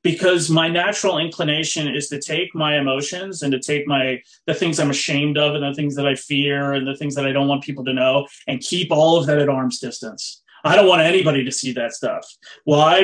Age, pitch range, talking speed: 30-49, 140-185 Hz, 235 wpm